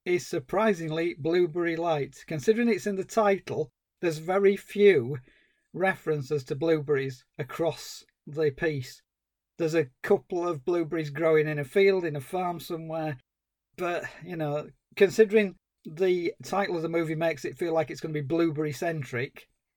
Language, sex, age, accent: English, male, 40-59, British